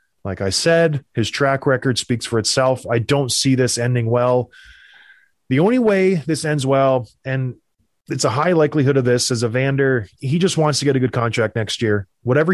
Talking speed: 195 wpm